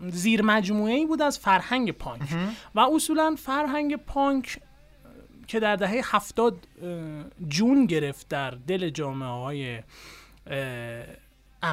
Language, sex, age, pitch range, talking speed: Persian, male, 30-49, 155-235 Hz, 110 wpm